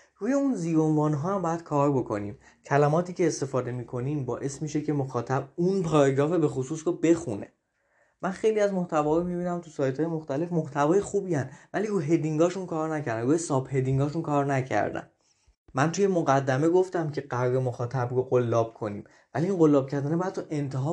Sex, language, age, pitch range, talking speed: male, Persian, 20-39, 135-180 Hz, 170 wpm